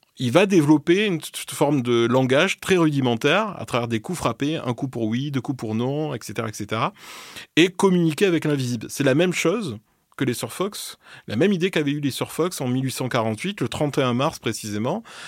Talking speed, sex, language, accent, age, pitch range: 195 wpm, male, French, French, 30-49, 110-155 Hz